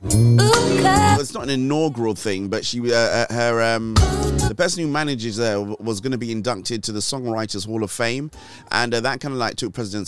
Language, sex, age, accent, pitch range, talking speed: English, male, 30-49, British, 100-120 Hz, 210 wpm